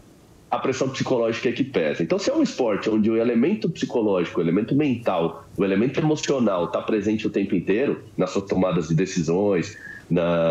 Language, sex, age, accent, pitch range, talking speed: Portuguese, male, 30-49, Brazilian, 110-165 Hz, 185 wpm